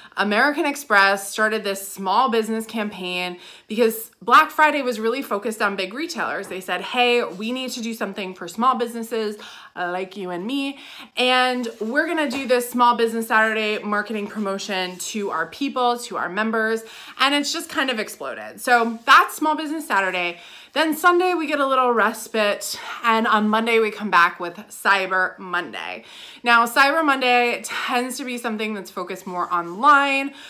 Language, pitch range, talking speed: English, 195-260 Hz, 165 wpm